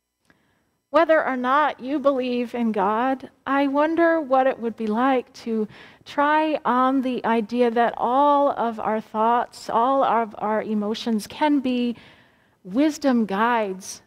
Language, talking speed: English, 135 wpm